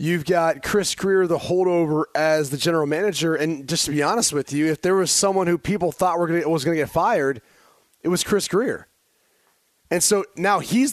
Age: 30-49